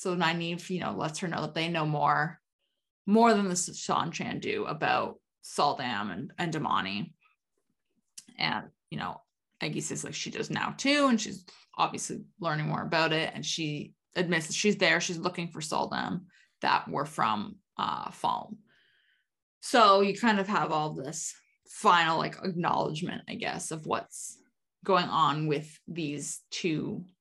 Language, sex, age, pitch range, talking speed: English, female, 20-39, 155-205 Hz, 160 wpm